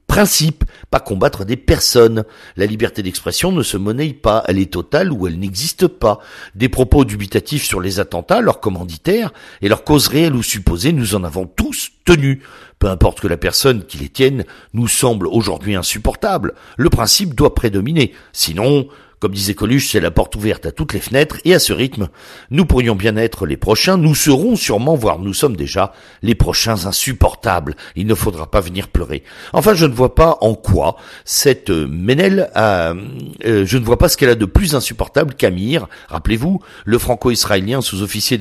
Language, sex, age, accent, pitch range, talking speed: French, male, 50-69, French, 95-135 Hz, 185 wpm